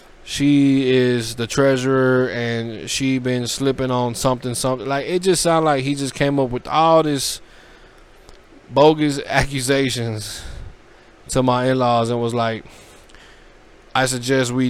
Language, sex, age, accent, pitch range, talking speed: English, male, 20-39, American, 115-135 Hz, 140 wpm